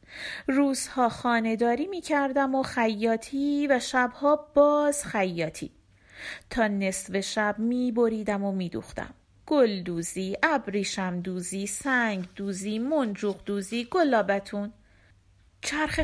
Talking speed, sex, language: 95 wpm, female, Persian